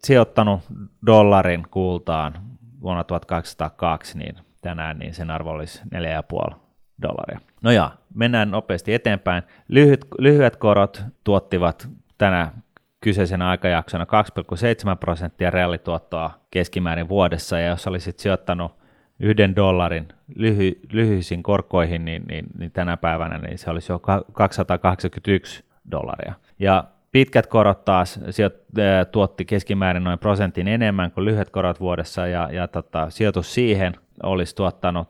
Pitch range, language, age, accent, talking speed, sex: 85-100 Hz, Finnish, 30-49, native, 120 wpm, male